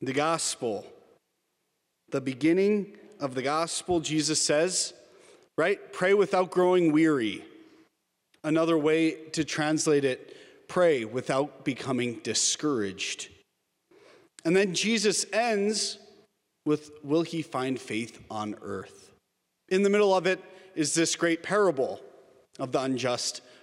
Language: English